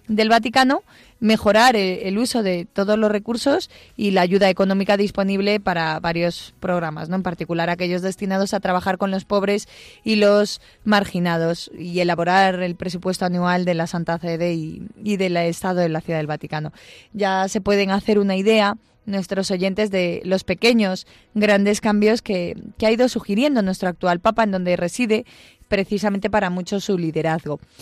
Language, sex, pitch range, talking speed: Spanish, female, 185-220 Hz, 165 wpm